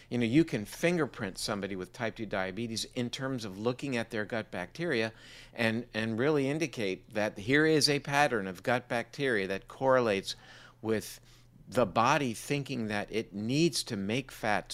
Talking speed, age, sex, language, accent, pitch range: 170 wpm, 50-69, male, English, American, 105-130 Hz